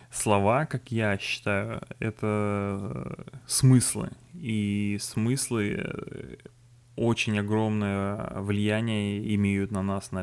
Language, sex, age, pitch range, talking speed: Russian, male, 20-39, 105-120 Hz, 90 wpm